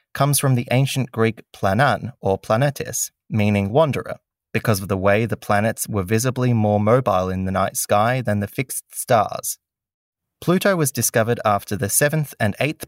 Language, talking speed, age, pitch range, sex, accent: English, 170 wpm, 20-39, 100-130 Hz, male, Australian